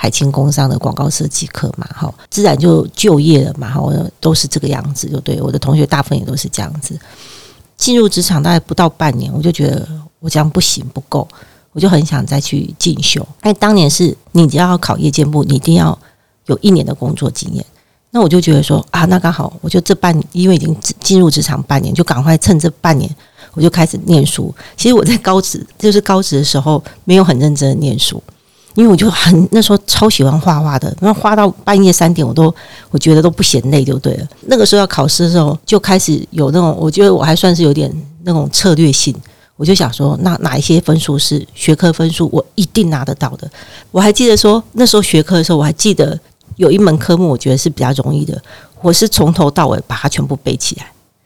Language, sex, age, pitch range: Chinese, female, 40-59, 145-180 Hz